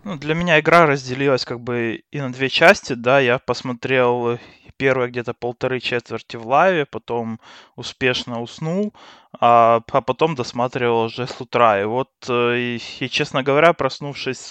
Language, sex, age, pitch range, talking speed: Russian, male, 20-39, 115-140 Hz, 150 wpm